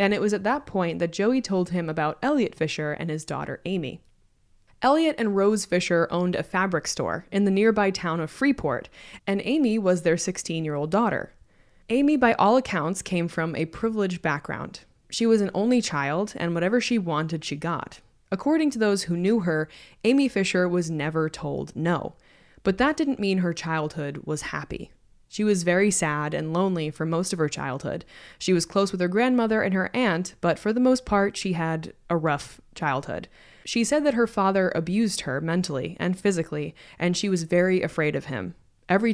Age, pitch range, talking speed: 20-39, 165-215 Hz, 190 wpm